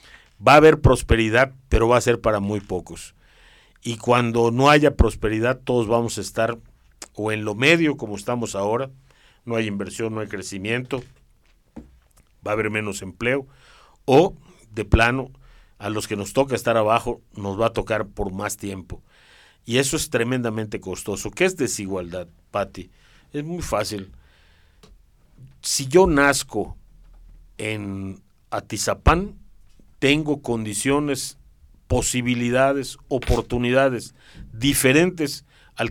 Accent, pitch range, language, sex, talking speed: Mexican, 100-135 Hz, Spanish, male, 130 wpm